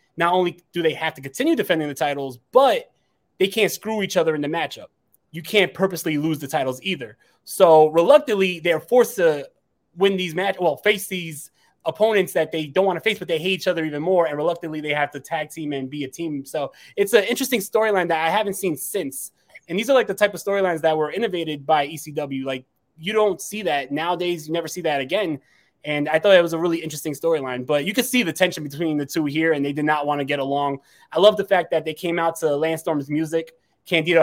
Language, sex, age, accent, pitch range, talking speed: English, male, 20-39, American, 140-180 Hz, 235 wpm